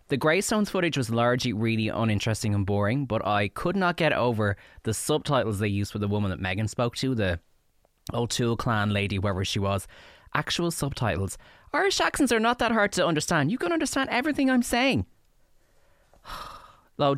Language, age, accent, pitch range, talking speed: English, 20-39, Irish, 100-155 Hz, 175 wpm